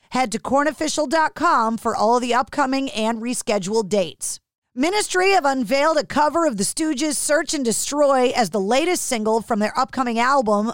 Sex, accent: female, American